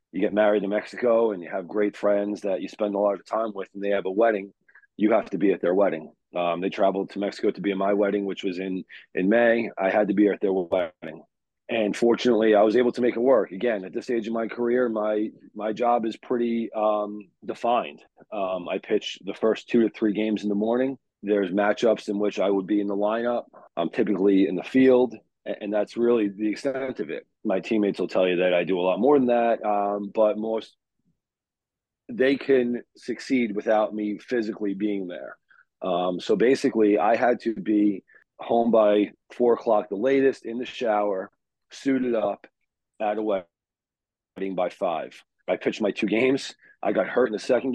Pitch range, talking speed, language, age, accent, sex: 100-115 Hz, 210 wpm, English, 30-49, American, male